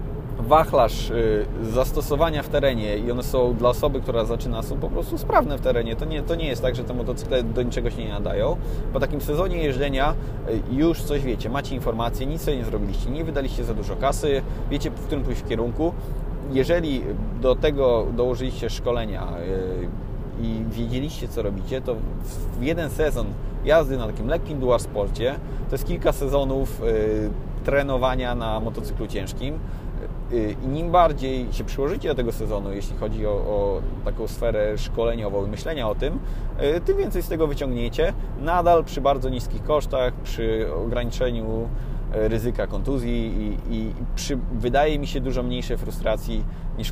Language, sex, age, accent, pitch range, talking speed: Polish, male, 20-39, native, 110-140 Hz, 155 wpm